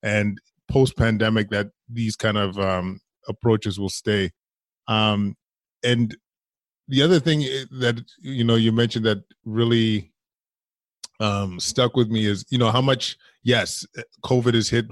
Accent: American